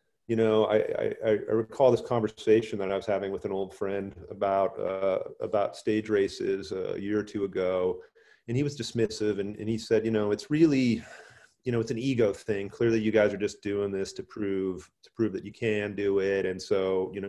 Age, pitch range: 40-59, 100-130 Hz